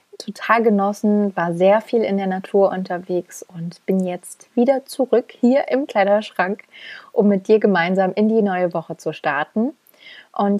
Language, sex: German, female